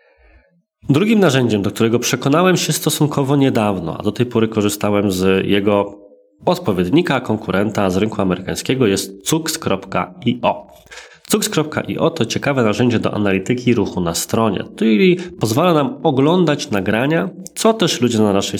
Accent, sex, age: native, male, 20-39